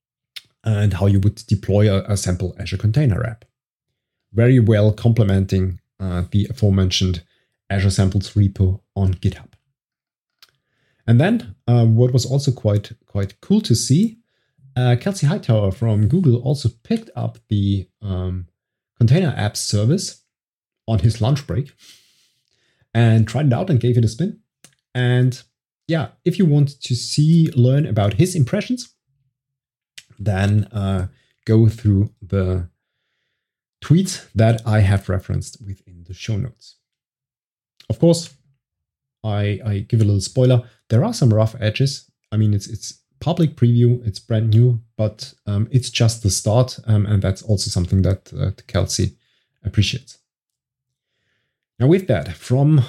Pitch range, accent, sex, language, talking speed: 105-130 Hz, German, male, English, 140 wpm